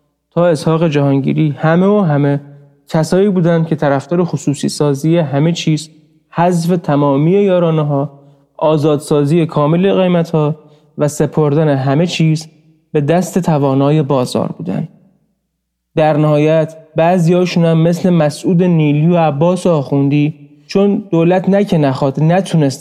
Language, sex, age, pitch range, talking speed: Persian, male, 30-49, 145-170 Hz, 120 wpm